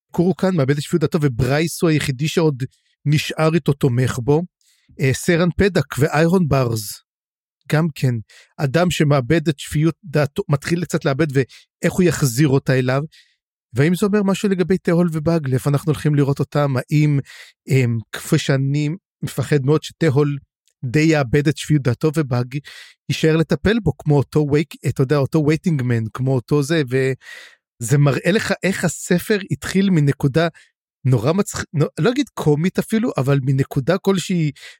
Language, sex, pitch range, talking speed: Hebrew, male, 140-170 Hz, 140 wpm